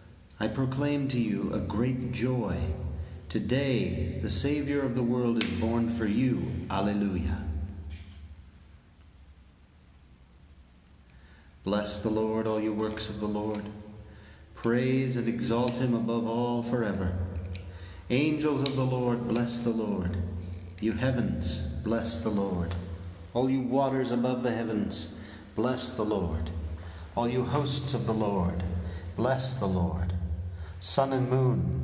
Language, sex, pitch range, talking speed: English, male, 90-115 Hz, 125 wpm